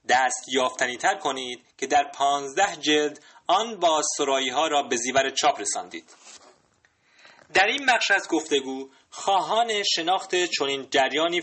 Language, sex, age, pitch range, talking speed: Persian, male, 30-49, 135-210 Hz, 135 wpm